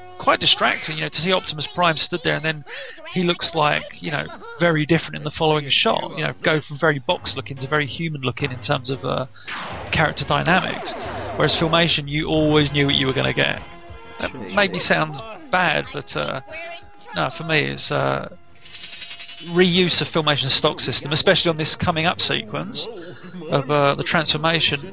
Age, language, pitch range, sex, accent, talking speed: 30-49, English, 135-165 Hz, male, British, 185 wpm